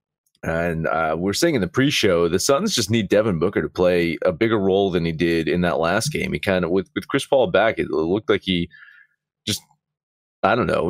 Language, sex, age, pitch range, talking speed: English, male, 30-49, 90-135 Hz, 225 wpm